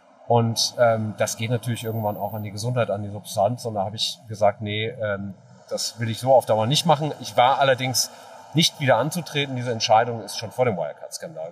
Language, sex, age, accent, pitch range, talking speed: German, male, 30-49, German, 110-130 Hz, 215 wpm